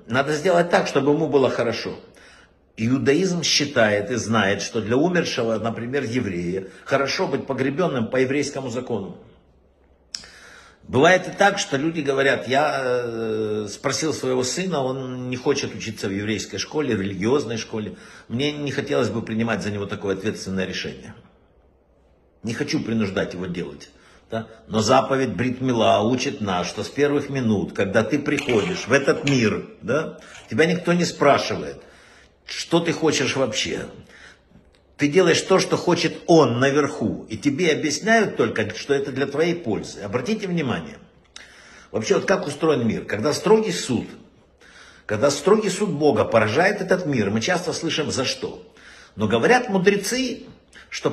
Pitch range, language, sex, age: 110-165 Hz, Russian, male, 60-79